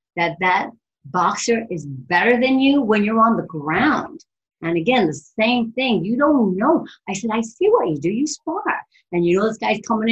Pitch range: 150-215 Hz